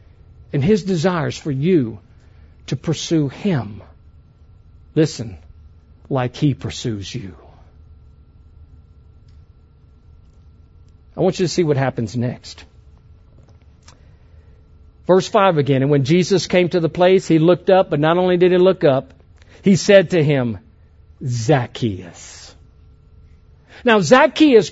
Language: English